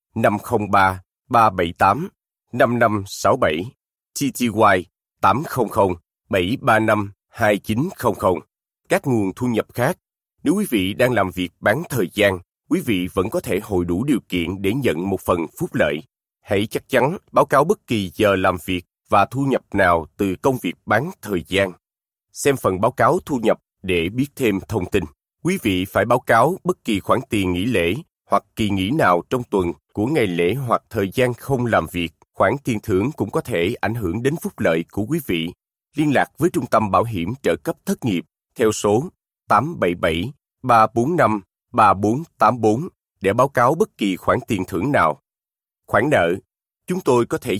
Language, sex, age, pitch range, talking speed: Vietnamese, male, 20-39, 95-125 Hz, 170 wpm